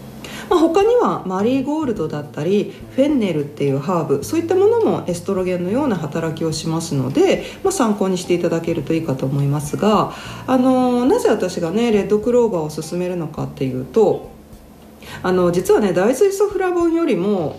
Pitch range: 170-275 Hz